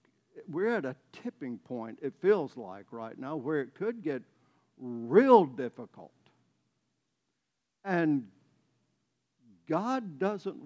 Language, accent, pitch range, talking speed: English, American, 125-190 Hz, 105 wpm